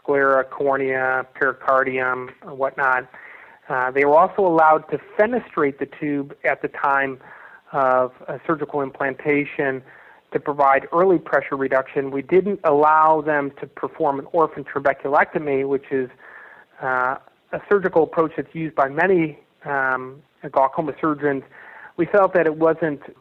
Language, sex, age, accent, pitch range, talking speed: English, male, 30-49, American, 130-155 Hz, 135 wpm